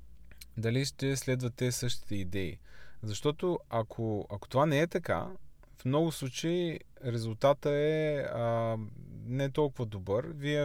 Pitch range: 105-145 Hz